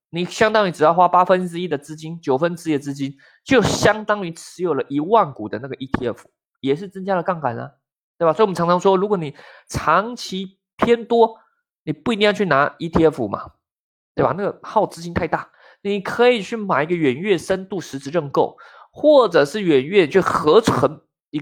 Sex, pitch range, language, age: male, 140-190 Hz, Chinese, 20-39